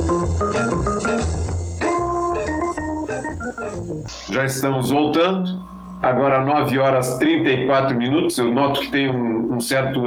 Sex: male